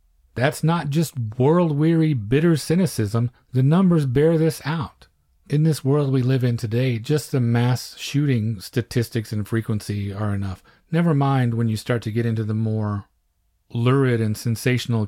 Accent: American